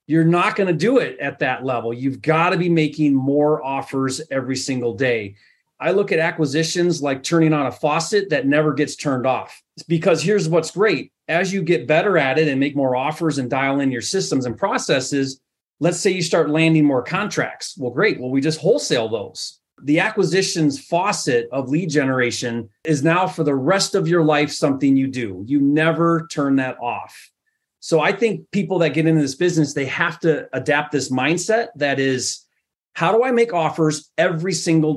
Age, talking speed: 30-49, 195 wpm